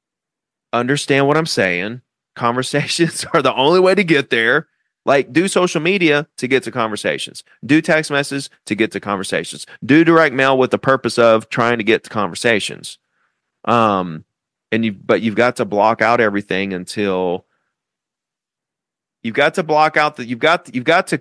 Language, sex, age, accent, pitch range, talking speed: English, male, 30-49, American, 115-155 Hz, 175 wpm